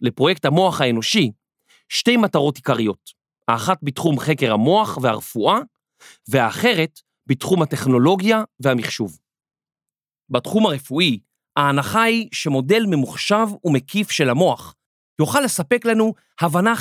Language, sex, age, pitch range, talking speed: Hebrew, male, 40-59, 140-210 Hz, 100 wpm